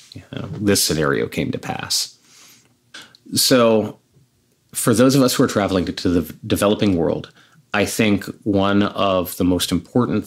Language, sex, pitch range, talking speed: English, male, 90-115 Hz, 140 wpm